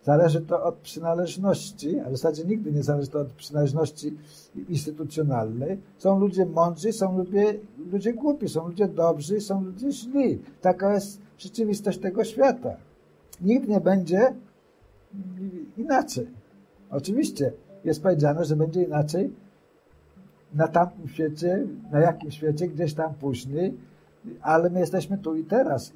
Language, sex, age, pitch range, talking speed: Polish, male, 60-79, 155-200 Hz, 130 wpm